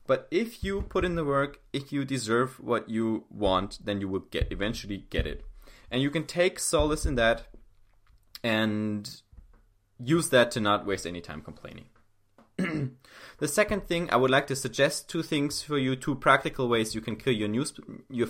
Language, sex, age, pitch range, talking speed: English, male, 20-39, 105-140 Hz, 185 wpm